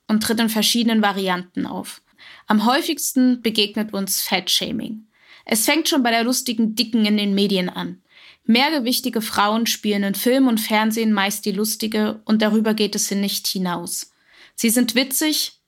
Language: German